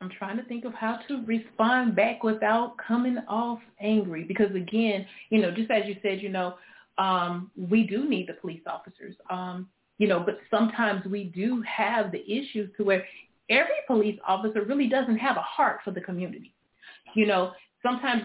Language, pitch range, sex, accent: English, 205-260 Hz, female, American